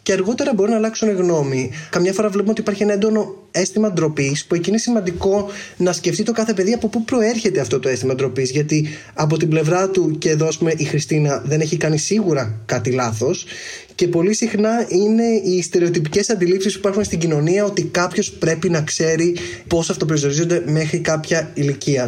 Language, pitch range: Greek, 155-195 Hz